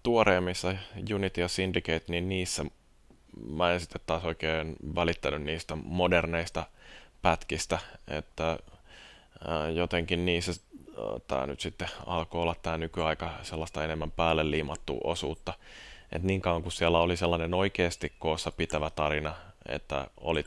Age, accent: 20-39, native